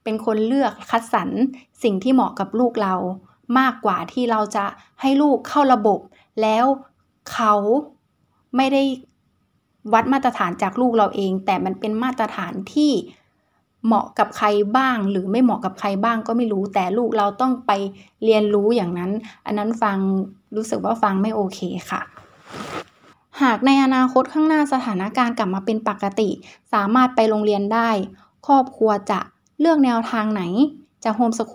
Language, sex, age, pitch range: Thai, female, 20-39, 205-245 Hz